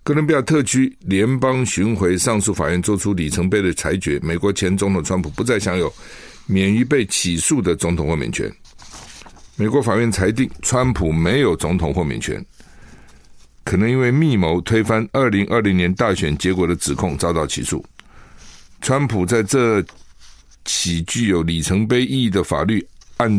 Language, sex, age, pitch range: Chinese, male, 50-69, 85-120 Hz